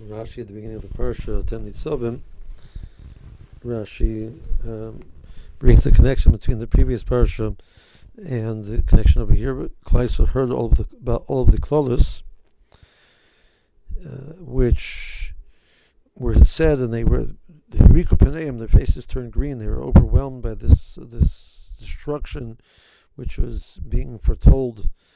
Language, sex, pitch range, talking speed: English, male, 105-130 Hz, 135 wpm